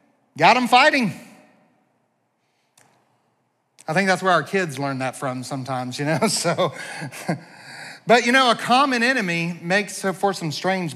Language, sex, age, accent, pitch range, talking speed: English, male, 40-59, American, 140-175 Hz, 140 wpm